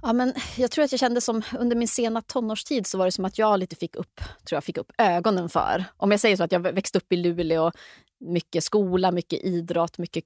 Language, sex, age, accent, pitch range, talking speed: Swedish, female, 30-49, native, 165-215 Hz, 245 wpm